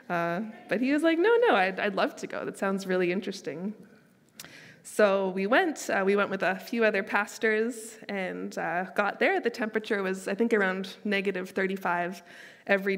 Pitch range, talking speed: 190-230 Hz, 185 wpm